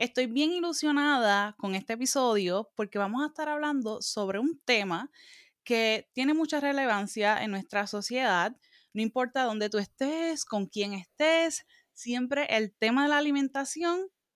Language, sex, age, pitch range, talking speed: Spanish, female, 10-29, 210-290 Hz, 145 wpm